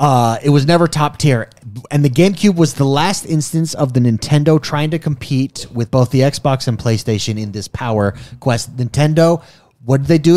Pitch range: 115-150 Hz